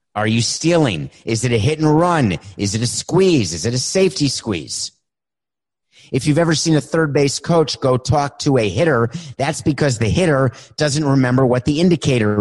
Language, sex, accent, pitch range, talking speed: English, male, American, 115-145 Hz, 195 wpm